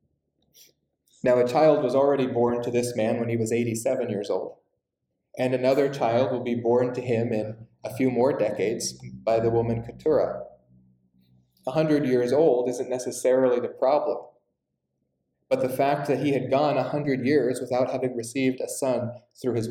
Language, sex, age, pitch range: English, male, 20-39, 115-135 Hz